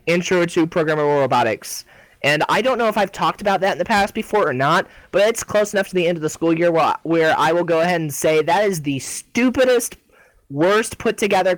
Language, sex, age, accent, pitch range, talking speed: English, male, 20-39, American, 135-180 Hz, 230 wpm